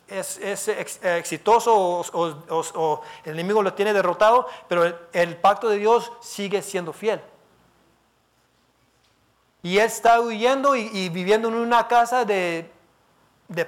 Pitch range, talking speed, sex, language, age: 180-225 Hz, 145 wpm, male, Spanish, 40-59